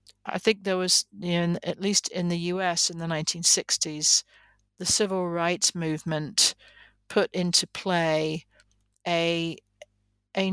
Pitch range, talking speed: 160-185 Hz, 130 wpm